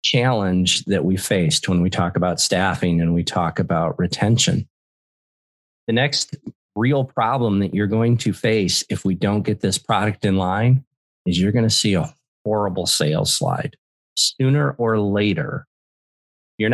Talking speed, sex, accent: 160 wpm, male, American